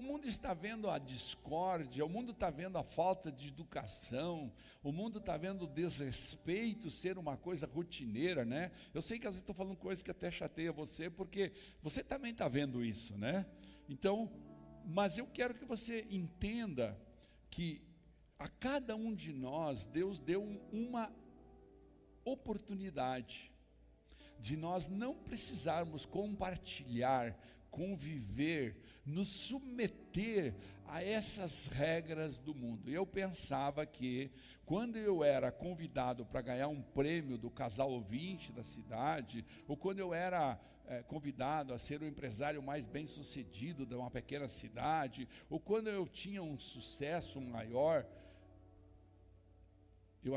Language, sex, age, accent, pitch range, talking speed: Portuguese, male, 60-79, Brazilian, 125-190 Hz, 140 wpm